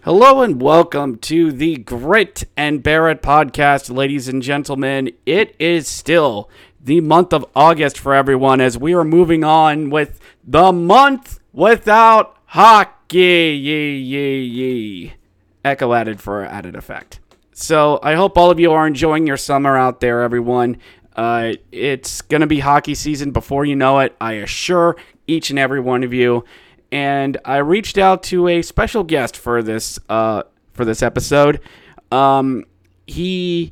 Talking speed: 150 wpm